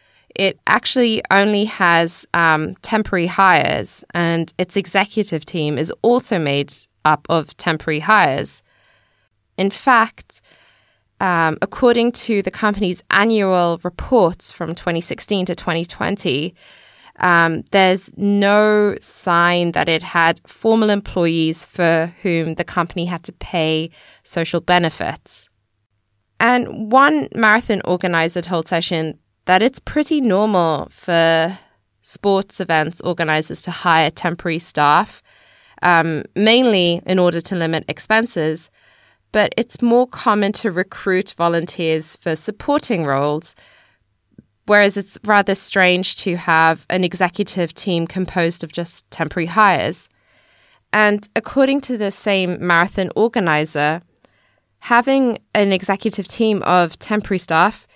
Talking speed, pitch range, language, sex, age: 115 wpm, 165-205 Hz, English, female, 20-39